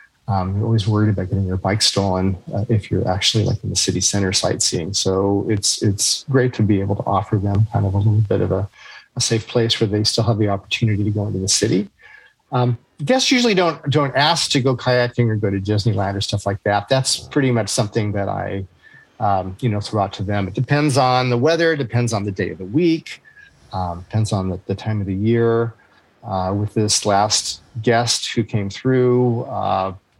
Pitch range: 100-120 Hz